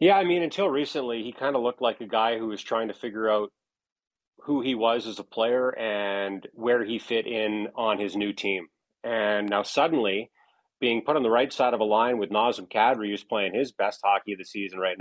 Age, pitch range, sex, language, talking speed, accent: 30-49, 110-150 Hz, male, English, 230 wpm, American